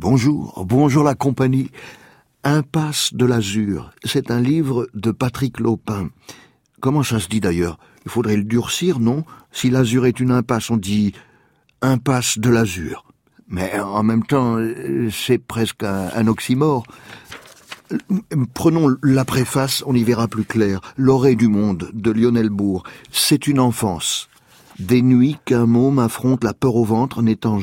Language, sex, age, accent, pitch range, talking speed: French, male, 50-69, French, 110-130 Hz, 150 wpm